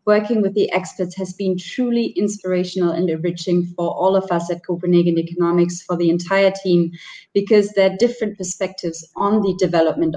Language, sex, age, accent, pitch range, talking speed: English, female, 30-49, German, 170-210 Hz, 165 wpm